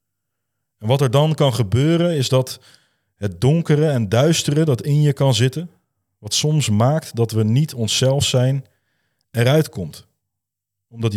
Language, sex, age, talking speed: Dutch, male, 40-59, 150 wpm